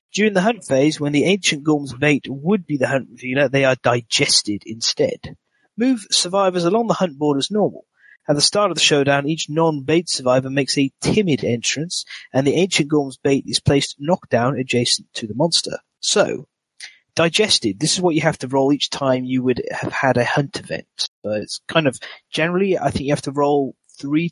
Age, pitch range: 30-49, 135-175 Hz